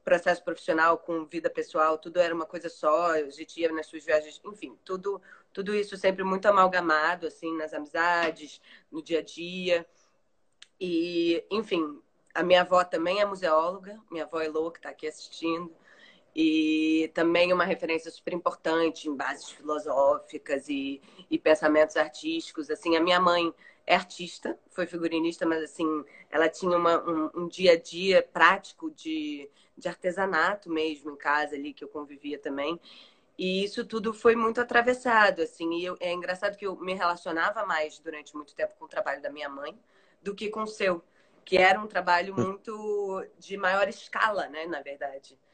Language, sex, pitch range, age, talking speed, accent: Portuguese, female, 155-190 Hz, 20-39, 170 wpm, Brazilian